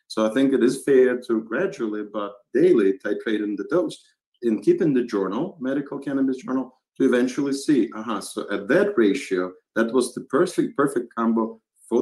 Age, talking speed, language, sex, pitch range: 50-69, 190 wpm, English, male, 110-140 Hz